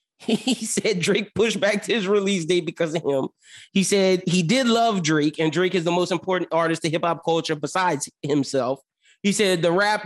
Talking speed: 210 wpm